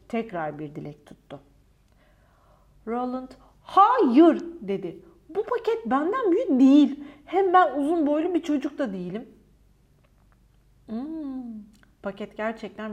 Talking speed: 105 wpm